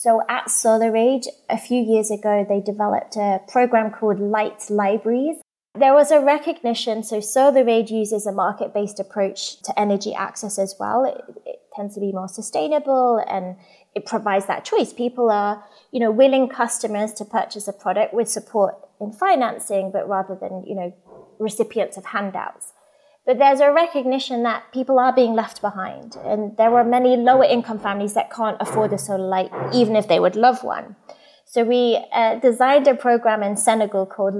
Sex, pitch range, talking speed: female, 205-255 Hz, 175 wpm